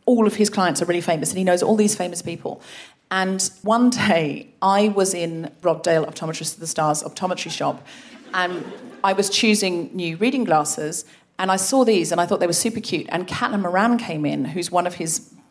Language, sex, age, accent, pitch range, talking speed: English, female, 40-59, British, 175-235 Hz, 215 wpm